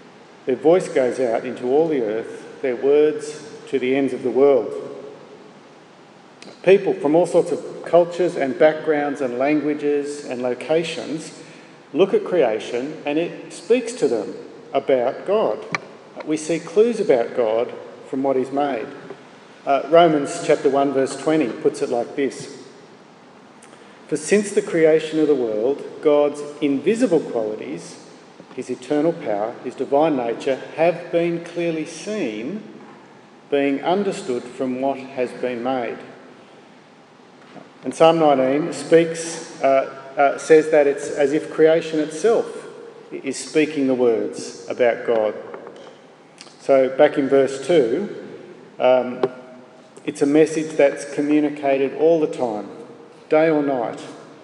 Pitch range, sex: 135-175 Hz, male